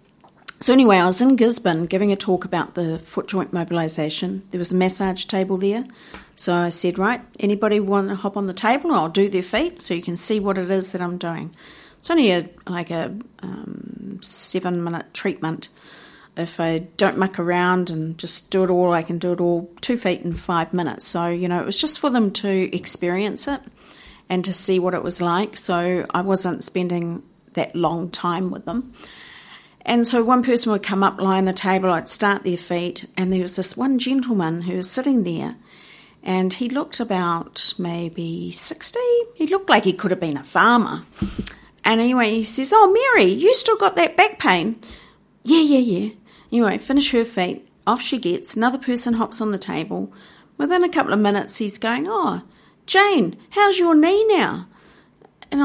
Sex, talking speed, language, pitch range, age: female, 195 wpm, English, 180-240 Hz, 50-69